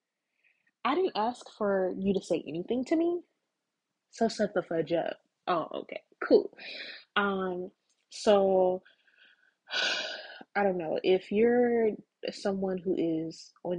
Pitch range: 180-220 Hz